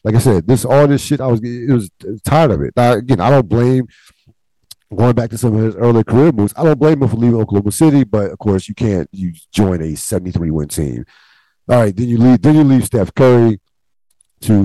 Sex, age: male, 50-69